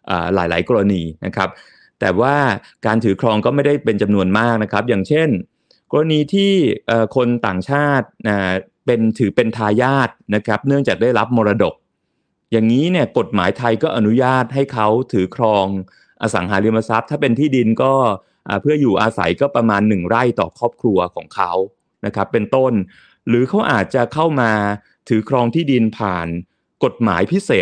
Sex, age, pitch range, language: male, 30-49, 105-135 Hz, Thai